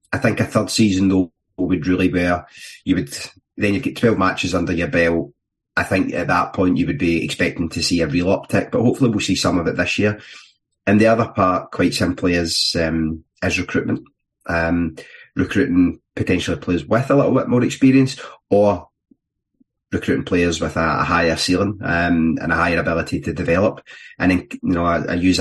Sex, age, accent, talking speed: male, 30-49, British, 195 wpm